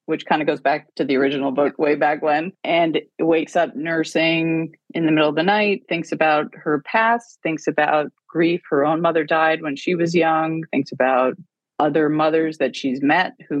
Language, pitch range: English, 145-180 Hz